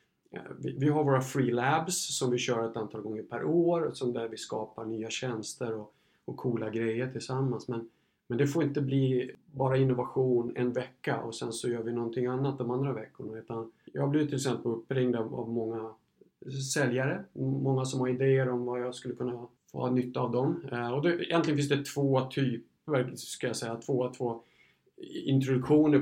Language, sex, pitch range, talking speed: Swedish, male, 120-135 Hz, 185 wpm